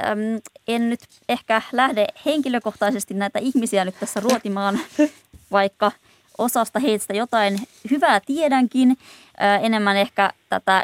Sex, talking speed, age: female, 105 wpm, 20-39